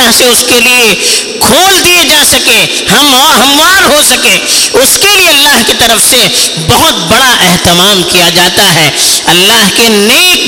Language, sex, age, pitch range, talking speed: Urdu, female, 50-69, 215-335 Hz, 165 wpm